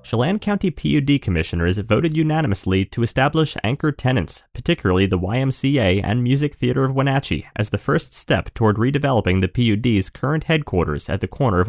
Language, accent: English, American